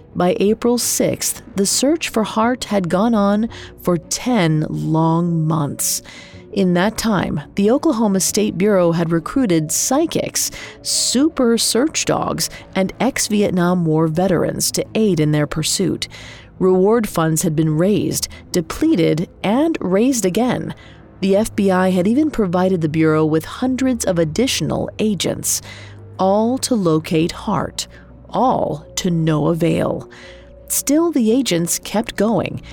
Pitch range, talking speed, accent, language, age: 160-215 Hz, 130 wpm, American, English, 40-59